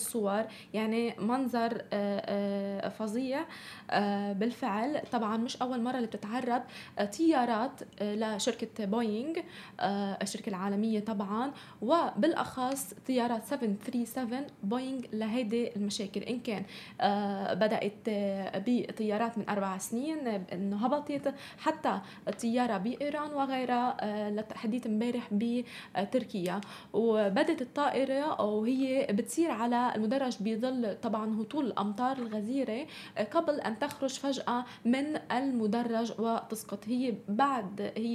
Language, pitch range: Arabic, 210-255 Hz